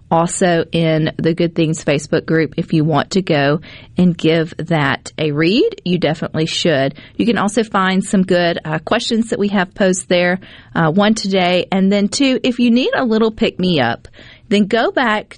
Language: English